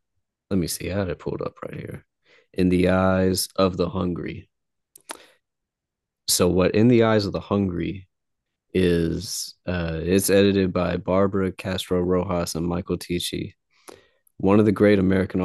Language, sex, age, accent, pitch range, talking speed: English, male, 20-39, American, 90-100 Hz, 155 wpm